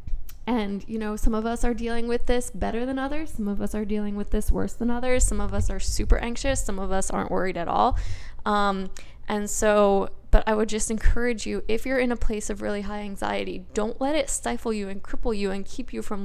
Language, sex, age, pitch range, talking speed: English, female, 10-29, 205-245 Hz, 245 wpm